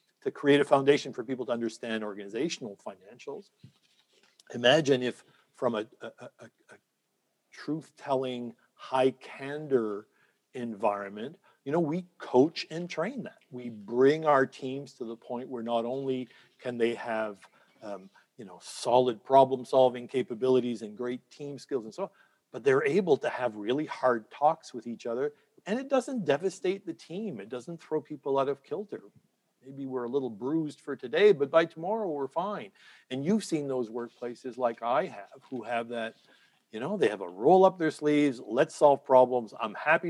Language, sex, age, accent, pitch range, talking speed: English, male, 50-69, American, 125-155 Hz, 170 wpm